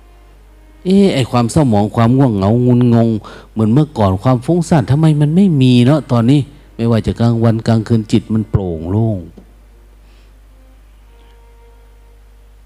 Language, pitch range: Thai, 100-120 Hz